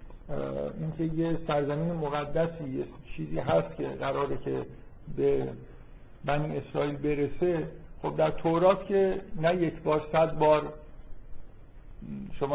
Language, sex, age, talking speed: Persian, male, 50-69, 110 wpm